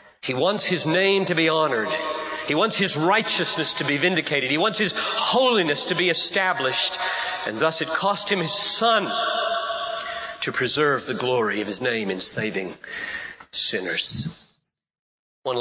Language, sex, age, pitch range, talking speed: English, male, 40-59, 150-220 Hz, 150 wpm